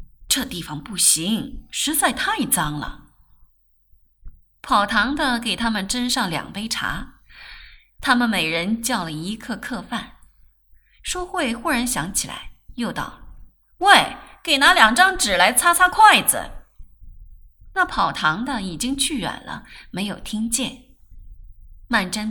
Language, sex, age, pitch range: Chinese, female, 20-39, 180-280 Hz